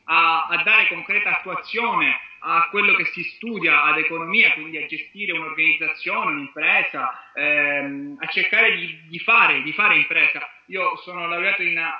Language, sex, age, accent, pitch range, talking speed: Italian, male, 20-39, native, 155-190 Hz, 155 wpm